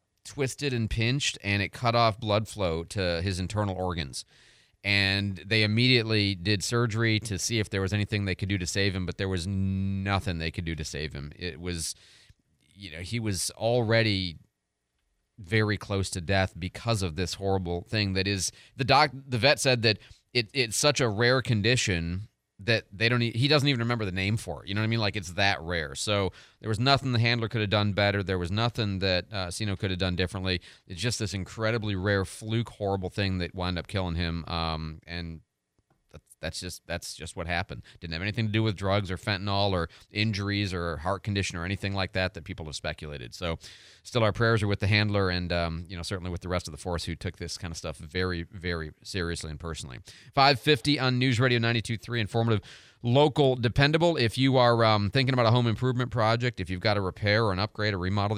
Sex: male